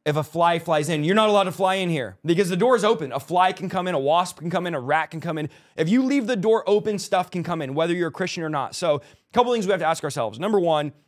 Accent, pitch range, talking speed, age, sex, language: American, 150-190 Hz, 320 wpm, 20-39, male, English